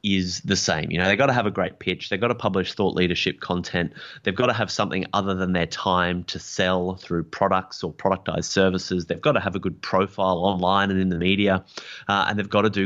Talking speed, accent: 245 wpm, Australian